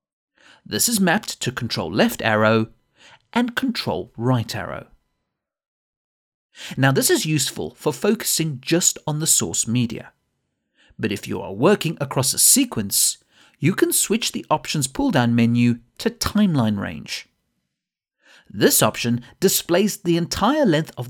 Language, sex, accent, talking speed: English, male, British, 130 wpm